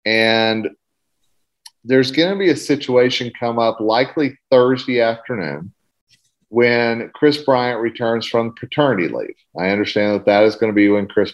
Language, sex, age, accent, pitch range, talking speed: English, male, 40-59, American, 105-130 Hz, 155 wpm